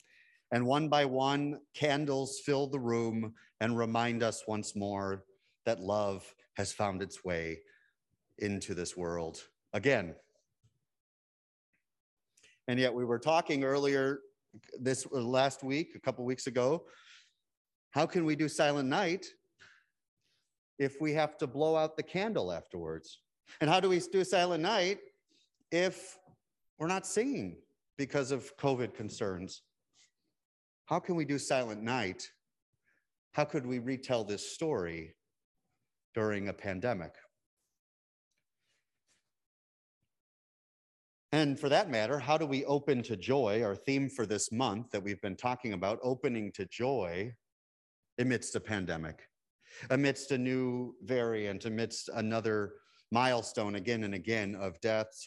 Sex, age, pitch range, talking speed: male, 30-49, 100-145 Hz, 130 wpm